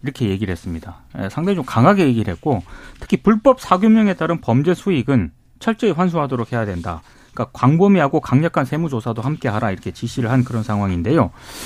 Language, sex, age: Korean, male, 30-49